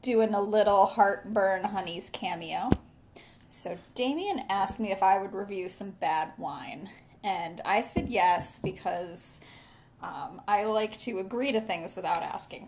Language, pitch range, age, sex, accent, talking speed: English, 190-235 Hz, 10-29, female, American, 145 wpm